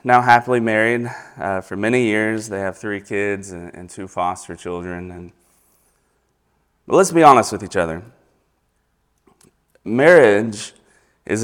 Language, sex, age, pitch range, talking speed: English, male, 30-49, 90-115 Hz, 130 wpm